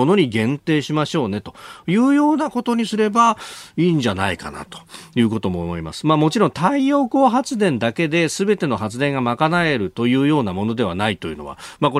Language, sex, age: Japanese, male, 40-59